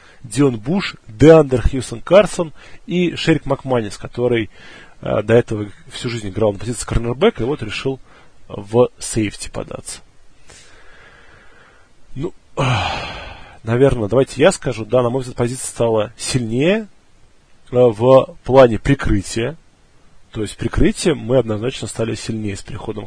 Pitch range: 110-135 Hz